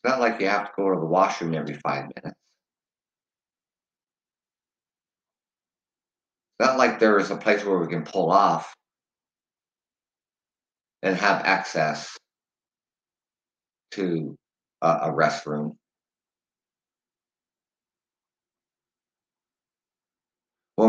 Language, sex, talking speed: English, male, 95 wpm